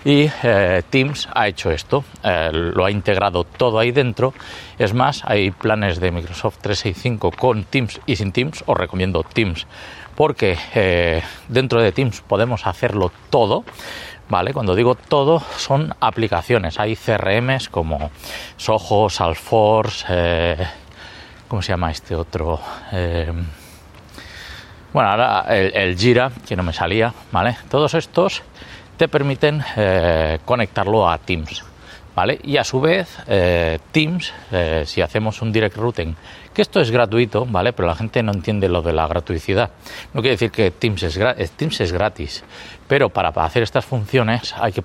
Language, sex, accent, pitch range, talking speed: Spanish, male, Spanish, 85-115 Hz, 155 wpm